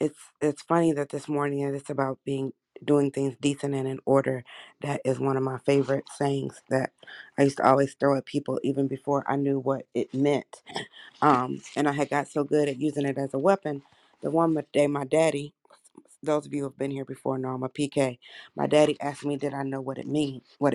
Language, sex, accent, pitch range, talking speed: English, female, American, 135-155 Hz, 225 wpm